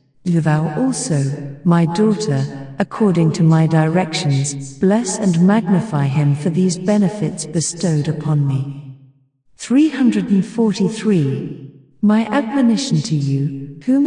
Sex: female